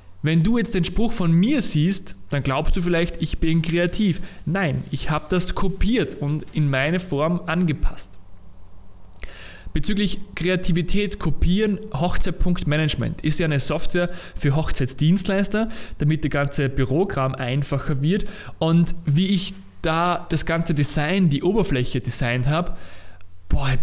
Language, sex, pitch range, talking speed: German, male, 130-170 Hz, 135 wpm